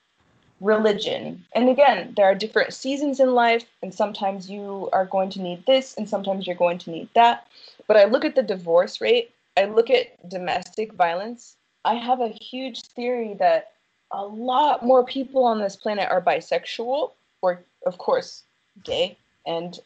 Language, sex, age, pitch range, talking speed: English, female, 20-39, 195-260 Hz, 170 wpm